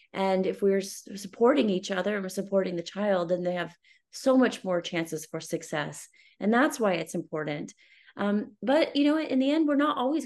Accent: American